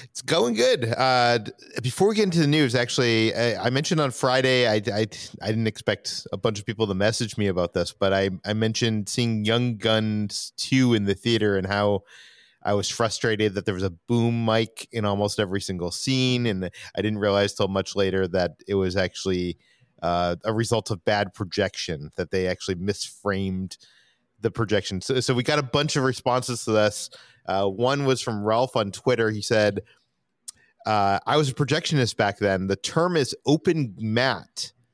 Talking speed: 190 wpm